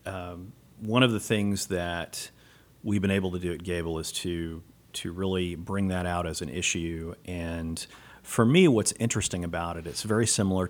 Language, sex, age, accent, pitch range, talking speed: English, male, 40-59, American, 90-110 Hz, 185 wpm